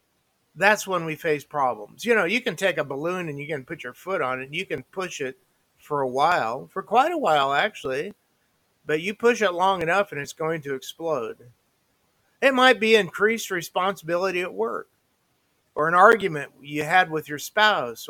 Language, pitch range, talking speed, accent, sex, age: English, 160-205 Hz, 195 wpm, American, male, 50-69